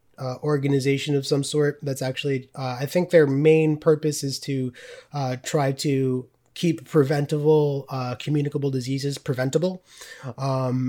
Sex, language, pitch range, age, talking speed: male, English, 130-155 Hz, 20-39, 140 wpm